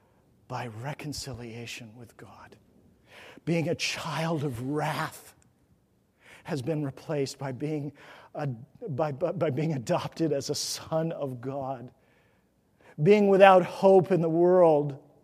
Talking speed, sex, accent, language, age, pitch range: 120 wpm, male, American, English, 50-69, 155-240 Hz